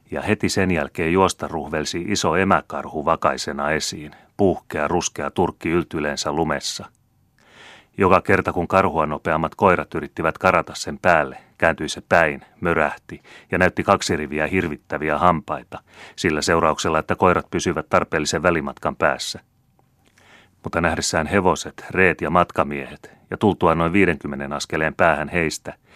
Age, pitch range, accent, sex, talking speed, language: 30-49, 75-95 Hz, native, male, 130 wpm, Finnish